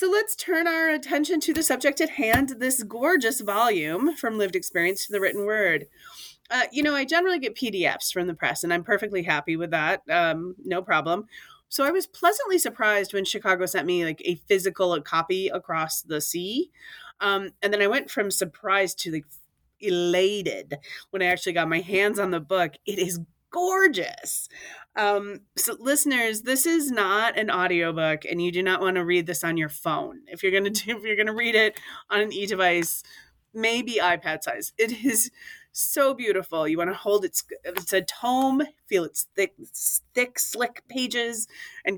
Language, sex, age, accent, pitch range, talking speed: English, female, 30-49, American, 175-255 Hz, 190 wpm